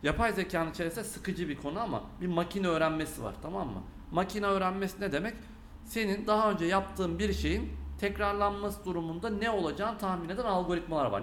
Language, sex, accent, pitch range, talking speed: Turkish, male, native, 160-210 Hz, 165 wpm